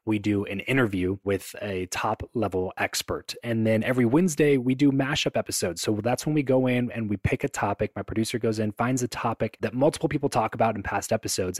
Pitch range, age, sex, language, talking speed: 100-125 Hz, 20-39, male, English, 215 wpm